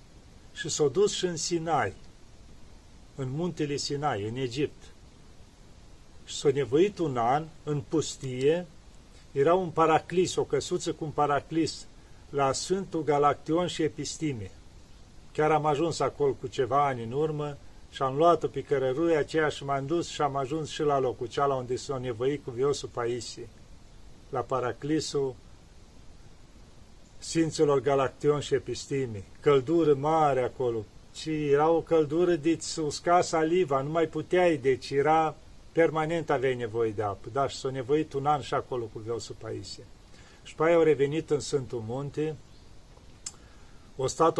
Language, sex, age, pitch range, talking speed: Romanian, male, 40-59, 130-160 Hz, 155 wpm